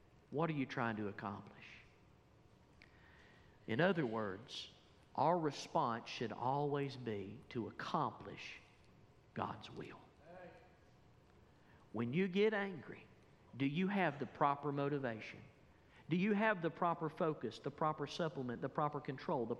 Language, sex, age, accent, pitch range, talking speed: English, male, 50-69, American, 115-160 Hz, 125 wpm